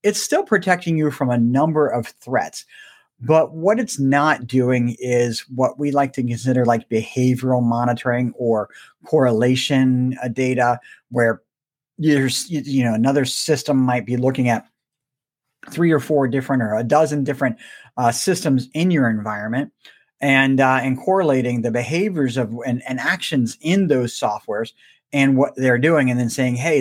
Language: English